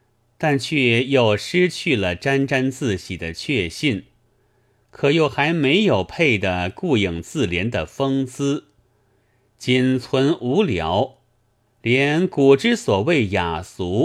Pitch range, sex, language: 100-130 Hz, male, Chinese